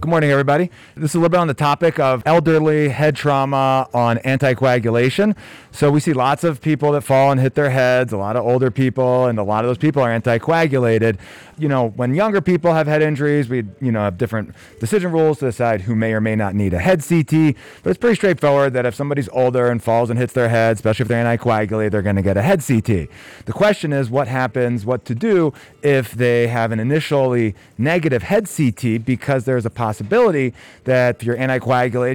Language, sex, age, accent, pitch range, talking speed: English, male, 30-49, American, 120-150 Hz, 220 wpm